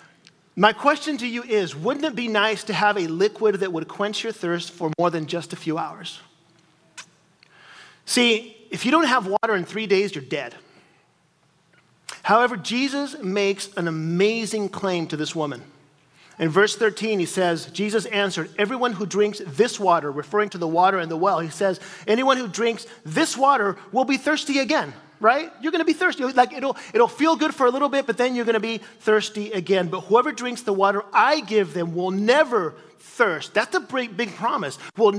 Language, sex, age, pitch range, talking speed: English, male, 40-59, 195-265 Hz, 195 wpm